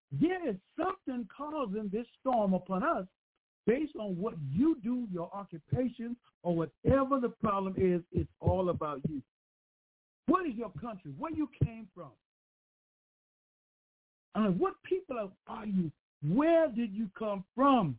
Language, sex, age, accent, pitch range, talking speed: English, male, 60-79, American, 180-250 Hz, 140 wpm